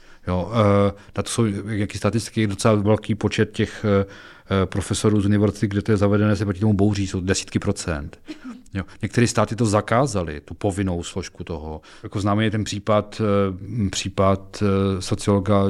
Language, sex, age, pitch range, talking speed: Czech, male, 40-59, 95-120 Hz, 140 wpm